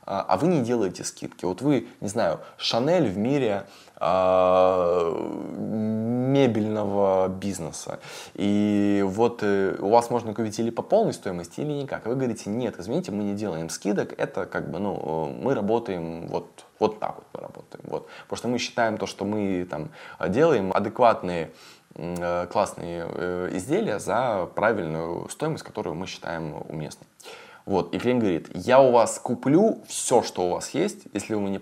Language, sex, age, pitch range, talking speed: Russian, male, 20-39, 85-110 Hz, 150 wpm